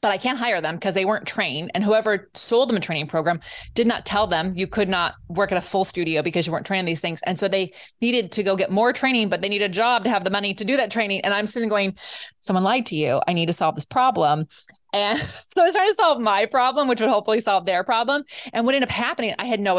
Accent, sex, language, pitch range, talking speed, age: American, female, English, 180-220 Hz, 285 wpm, 20-39